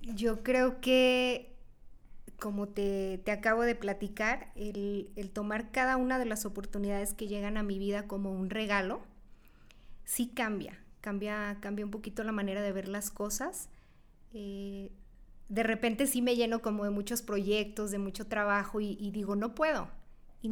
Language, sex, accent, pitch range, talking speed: Spanish, female, Mexican, 205-235 Hz, 165 wpm